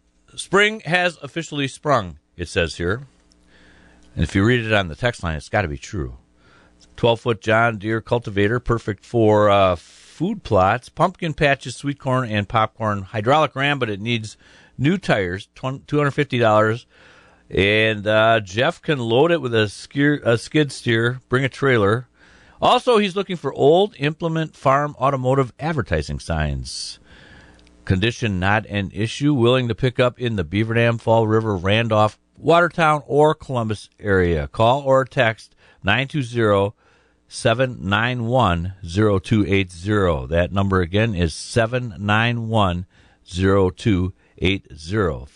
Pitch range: 95-135 Hz